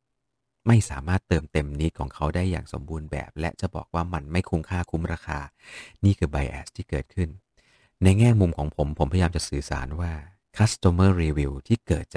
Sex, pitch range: male, 75-95 Hz